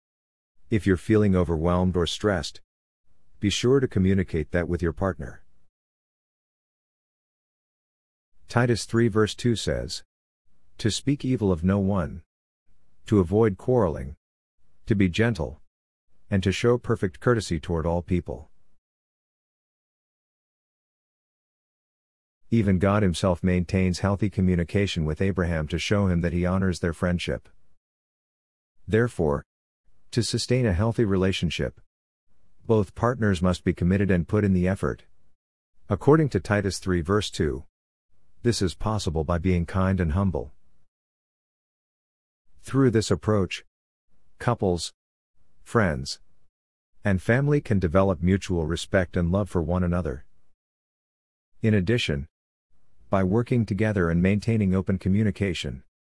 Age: 50-69